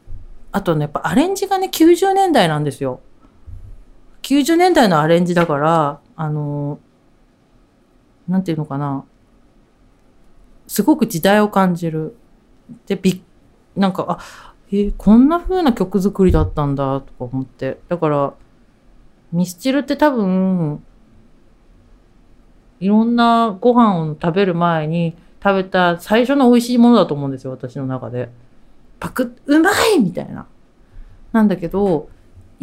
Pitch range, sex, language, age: 150-235 Hz, female, Japanese, 40-59